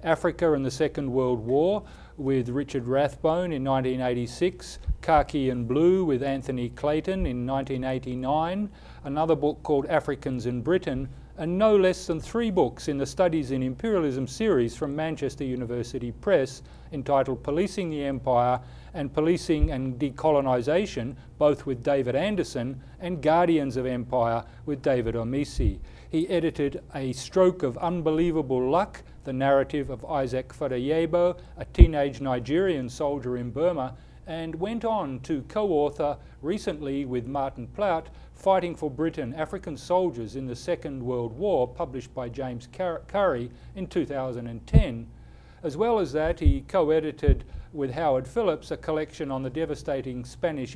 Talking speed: 140 wpm